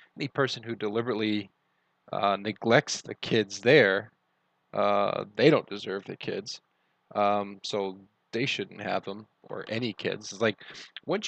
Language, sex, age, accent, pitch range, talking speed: English, male, 20-39, American, 105-130 Hz, 145 wpm